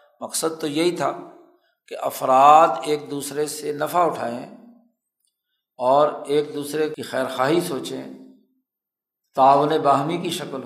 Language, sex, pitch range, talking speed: Urdu, male, 140-180 Hz, 120 wpm